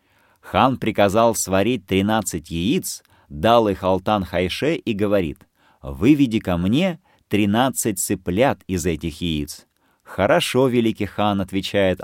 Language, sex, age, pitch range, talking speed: Russian, male, 30-49, 90-115 Hz, 115 wpm